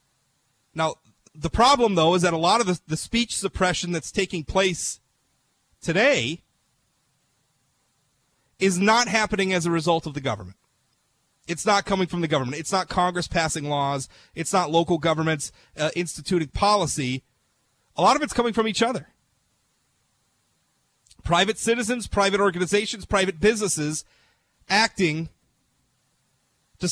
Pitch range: 145-200 Hz